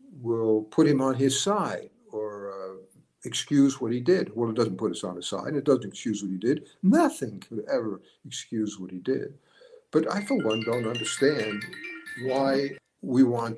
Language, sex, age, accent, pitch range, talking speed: English, male, 60-79, American, 110-180 Hz, 185 wpm